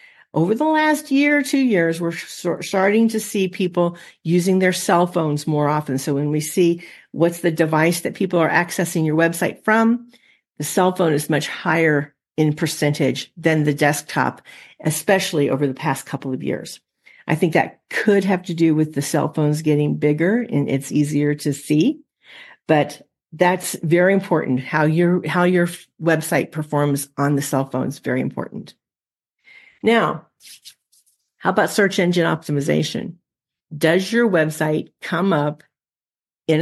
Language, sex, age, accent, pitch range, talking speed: English, female, 50-69, American, 150-185 Hz, 160 wpm